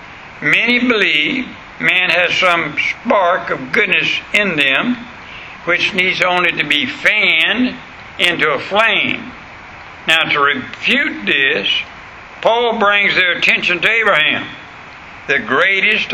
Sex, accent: male, American